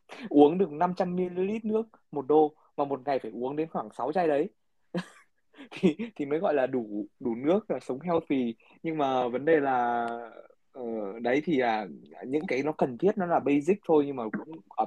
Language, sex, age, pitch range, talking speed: Vietnamese, male, 20-39, 130-175 Hz, 200 wpm